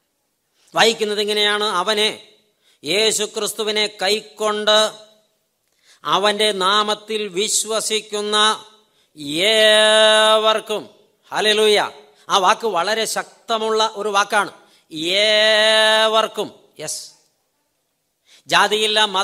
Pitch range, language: 210-245 Hz, English